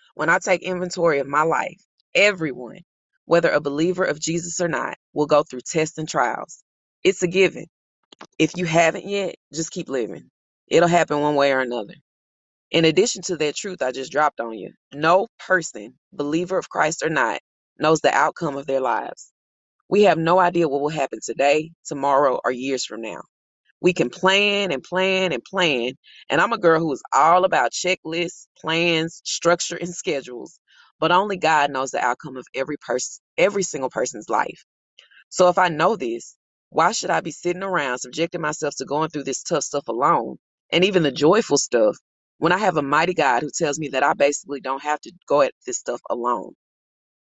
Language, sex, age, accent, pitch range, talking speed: English, female, 20-39, American, 140-180 Hz, 190 wpm